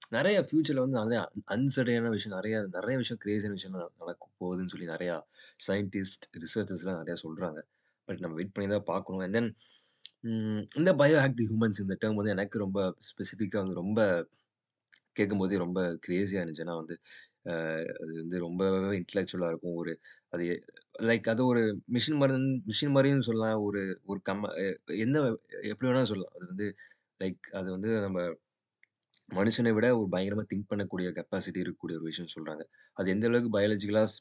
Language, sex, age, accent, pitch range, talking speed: Tamil, male, 20-39, native, 85-110 Hz, 150 wpm